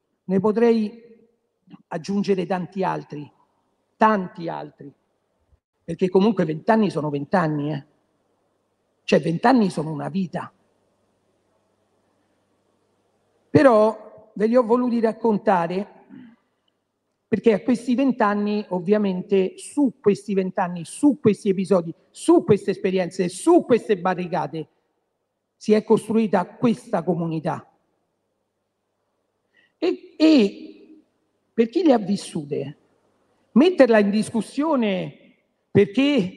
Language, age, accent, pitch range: Italian, 50-69, native, 190-245 Hz